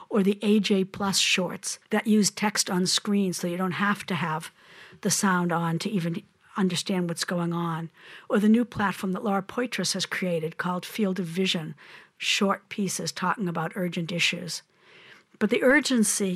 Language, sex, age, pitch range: English, female, 60-79, 175-200 Hz